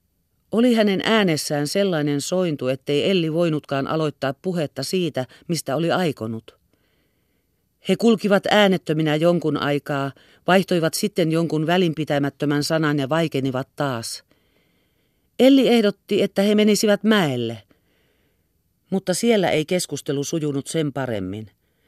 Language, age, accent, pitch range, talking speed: Finnish, 40-59, native, 140-185 Hz, 110 wpm